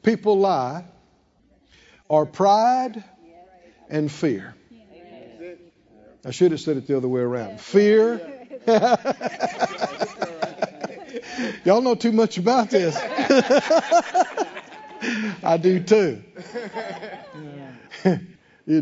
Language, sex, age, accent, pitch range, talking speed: English, male, 60-79, American, 165-230 Hz, 85 wpm